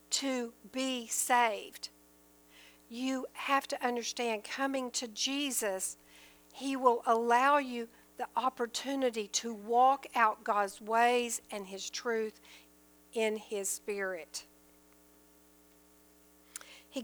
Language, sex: English, female